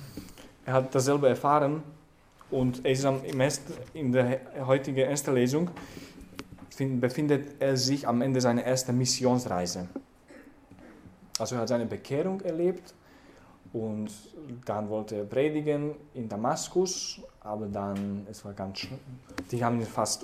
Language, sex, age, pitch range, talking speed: English, male, 10-29, 110-140 Hz, 120 wpm